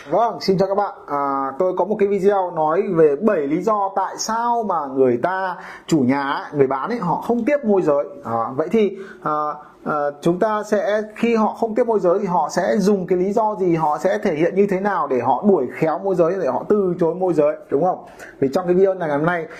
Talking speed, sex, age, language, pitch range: 240 wpm, male, 30-49, Vietnamese, 150-210 Hz